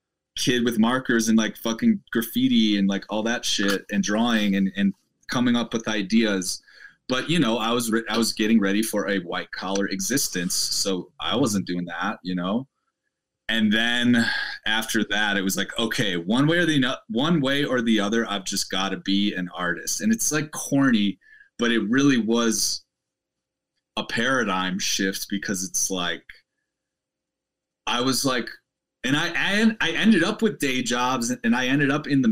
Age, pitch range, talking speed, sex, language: 20-39, 100-125 Hz, 180 wpm, male, English